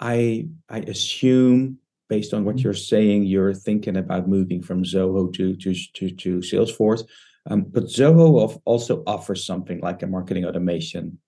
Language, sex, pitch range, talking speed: English, male, 95-115 Hz, 155 wpm